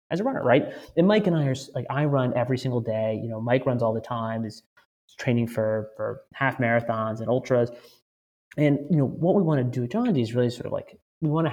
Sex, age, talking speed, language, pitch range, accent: male, 30-49, 260 wpm, English, 110-140 Hz, American